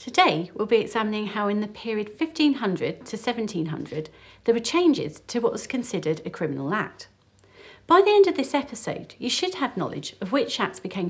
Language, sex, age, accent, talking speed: English, female, 40-59, British, 190 wpm